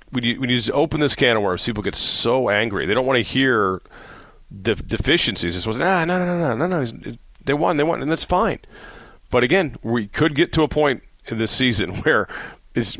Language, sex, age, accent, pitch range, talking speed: English, male, 40-59, American, 95-125 Hz, 240 wpm